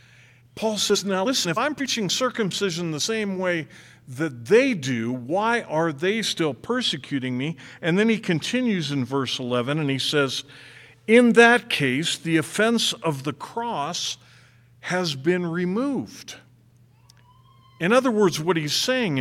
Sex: male